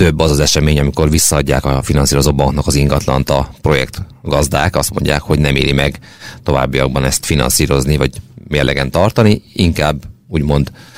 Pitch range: 70-90 Hz